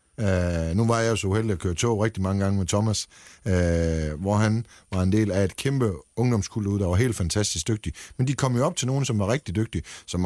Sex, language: male, Danish